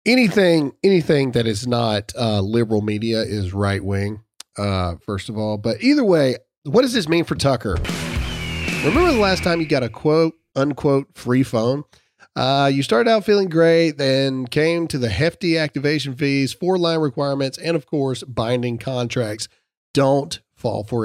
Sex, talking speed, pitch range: male, 170 wpm, 120-165 Hz